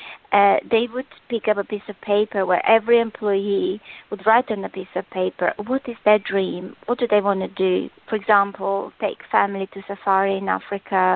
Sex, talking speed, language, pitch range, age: female, 200 wpm, English, 190-225 Hz, 20-39